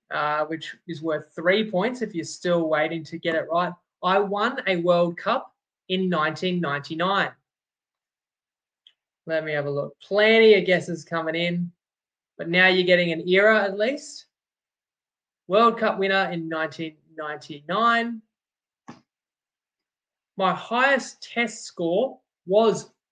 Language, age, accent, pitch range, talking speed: English, 20-39, Australian, 160-205 Hz, 125 wpm